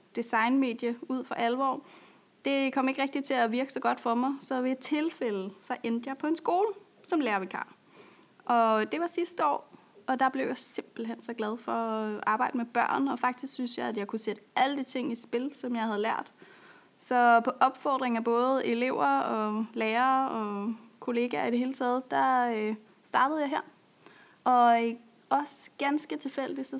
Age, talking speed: 30-49, 190 wpm